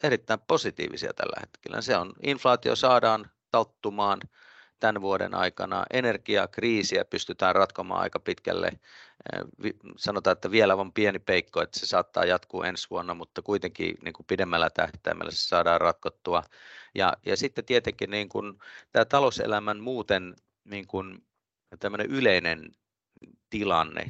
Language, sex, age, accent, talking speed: Finnish, male, 30-49, native, 120 wpm